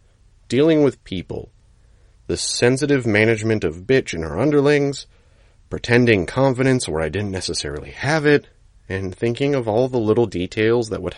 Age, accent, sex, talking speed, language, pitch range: 30-49, American, male, 150 wpm, English, 95-125 Hz